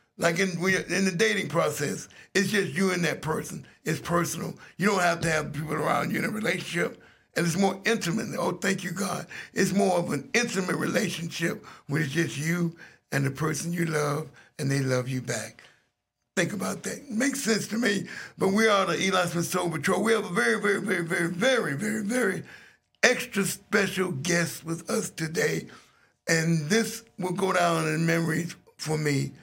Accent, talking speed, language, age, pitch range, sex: American, 195 wpm, English, 60-79, 150-195 Hz, male